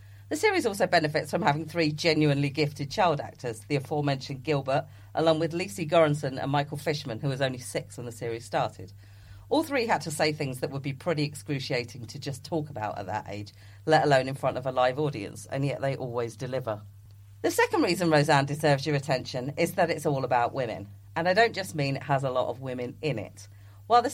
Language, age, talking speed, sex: English, 40-59, 220 wpm, female